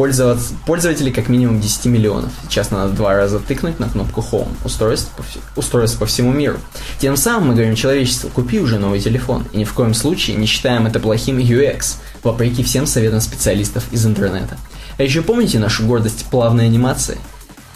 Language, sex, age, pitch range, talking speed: Russian, male, 20-39, 115-145 Hz, 175 wpm